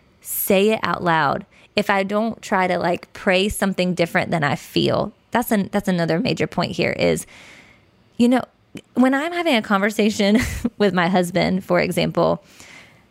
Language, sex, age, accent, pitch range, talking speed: English, female, 20-39, American, 180-235 Hz, 165 wpm